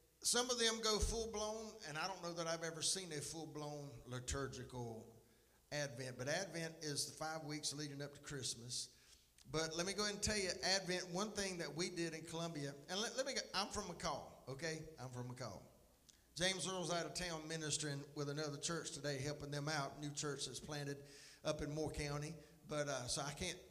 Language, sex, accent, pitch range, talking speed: English, male, American, 145-185 Hz, 200 wpm